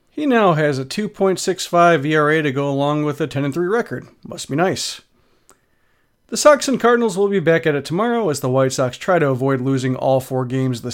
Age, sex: 40-59, male